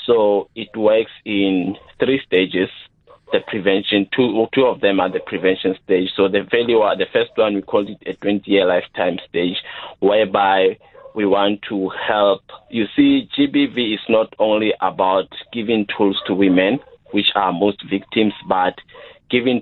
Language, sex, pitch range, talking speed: English, male, 100-120 Hz, 160 wpm